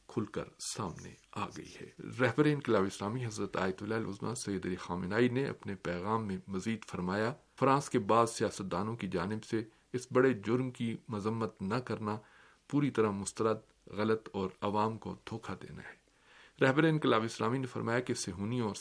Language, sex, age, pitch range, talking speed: Urdu, male, 50-69, 100-125 Hz, 160 wpm